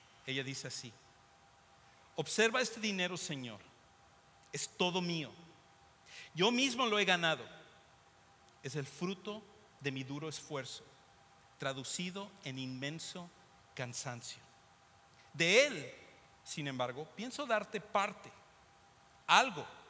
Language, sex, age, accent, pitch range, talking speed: English, male, 50-69, Mexican, 130-185 Hz, 105 wpm